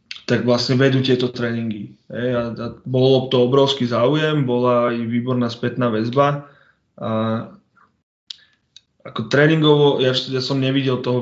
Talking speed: 120 wpm